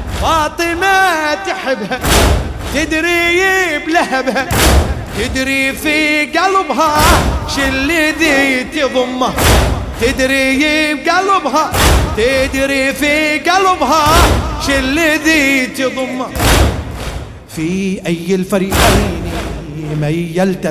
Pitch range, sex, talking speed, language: 140-205 Hz, male, 60 wpm, English